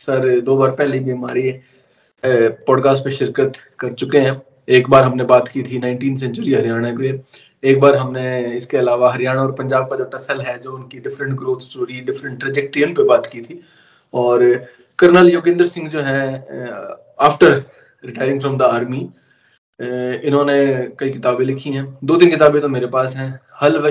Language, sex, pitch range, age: Hindi, male, 130-150 Hz, 20-39